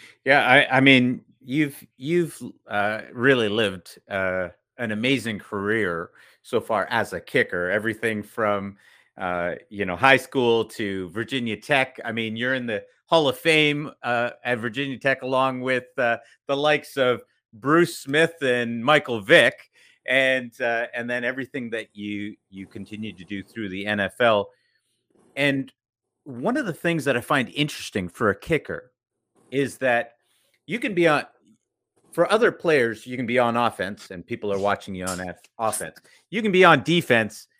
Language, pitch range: English, 115-165 Hz